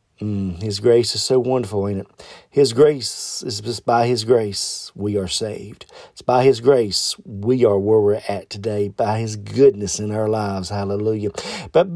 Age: 40-59